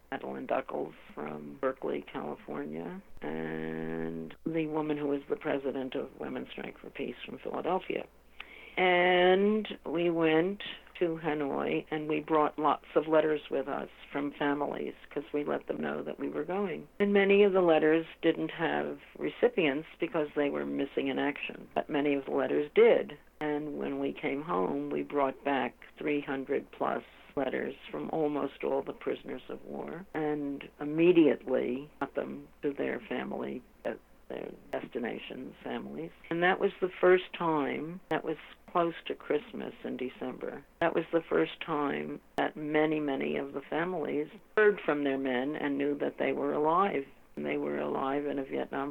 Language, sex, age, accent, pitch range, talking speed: English, female, 50-69, American, 115-165 Hz, 160 wpm